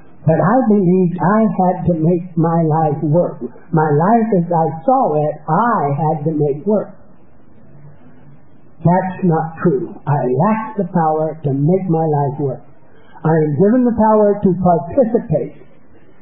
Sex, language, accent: male, English, American